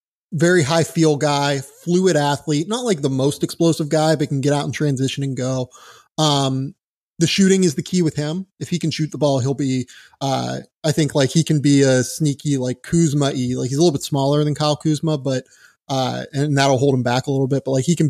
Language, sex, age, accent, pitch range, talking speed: English, male, 30-49, American, 135-165 Hz, 230 wpm